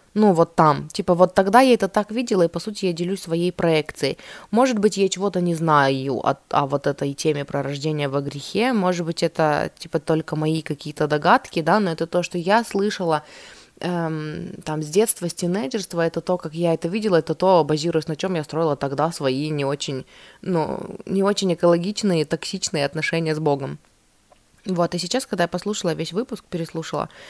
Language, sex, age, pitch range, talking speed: Russian, female, 20-39, 155-195 Hz, 190 wpm